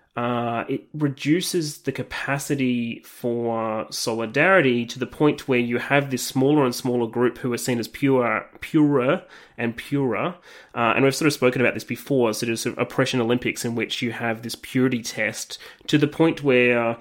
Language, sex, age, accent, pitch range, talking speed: English, male, 30-49, Australian, 115-130 Hz, 180 wpm